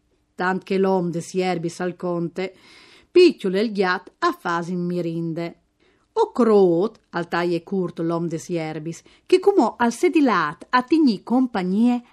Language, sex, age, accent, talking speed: Italian, female, 40-59, native, 130 wpm